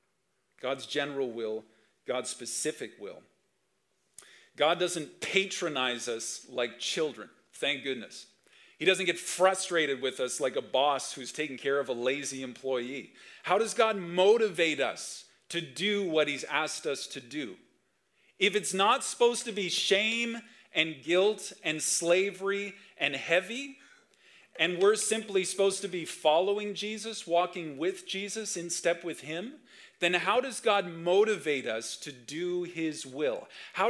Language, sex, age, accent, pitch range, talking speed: English, male, 40-59, American, 135-195 Hz, 145 wpm